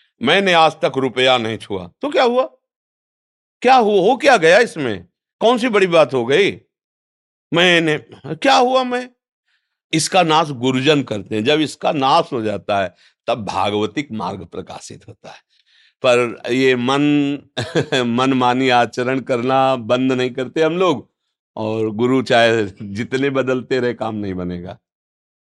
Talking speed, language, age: 145 wpm, Hindi, 50-69